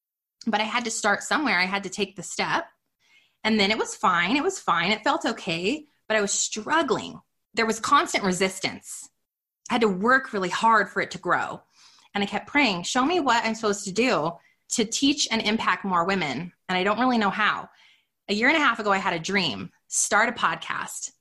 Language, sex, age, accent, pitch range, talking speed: English, female, 20-39, American, 185-240 Hz, 220 wpm